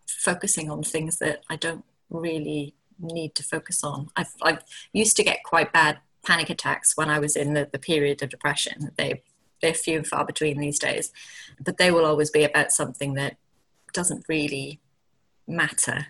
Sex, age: female, 30-49